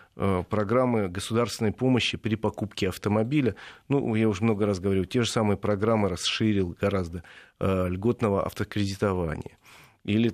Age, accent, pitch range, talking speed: 40-59, native, 95-115 Hz, 120 wpm